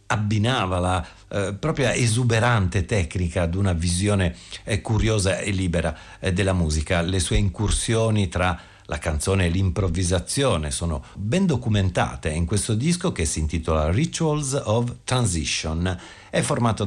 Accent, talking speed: native, 135 wpm